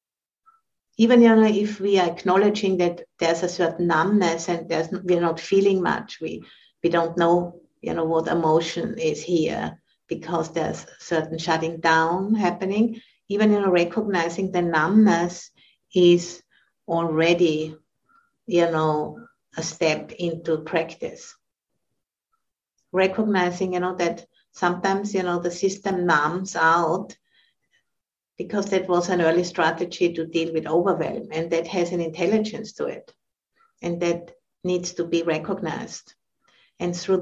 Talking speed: 140 wpm